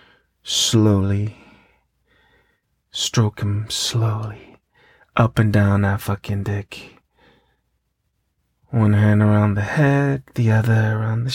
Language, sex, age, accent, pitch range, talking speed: English, male, 30-49, American, 100-110 Hz, 100 wpm